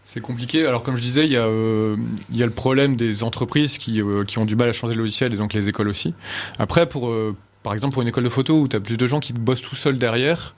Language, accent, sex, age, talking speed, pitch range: French, French, male, 30-49, 300 wpm, 110-140 Hz